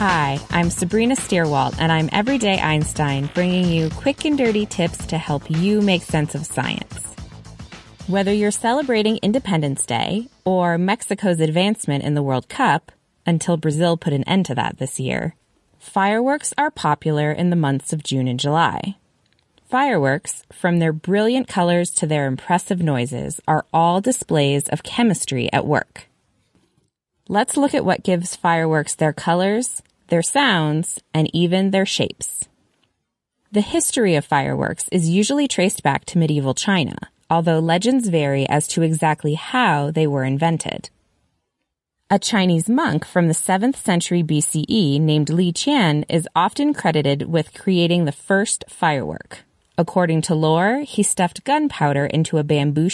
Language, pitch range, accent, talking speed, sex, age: English, 150-200 Hz, American, 150 wpm, female, 20-39